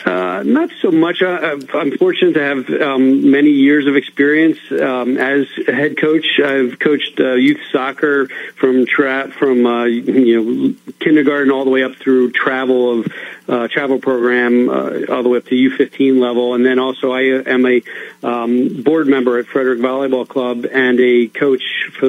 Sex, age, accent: male, 40-59, American